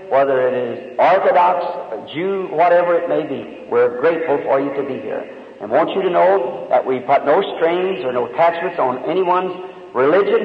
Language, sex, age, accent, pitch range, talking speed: English, male, 50-69, American, 145-185 Hz, 195 wpm